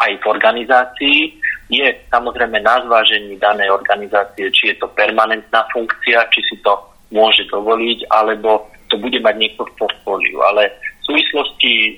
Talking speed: 155 wpm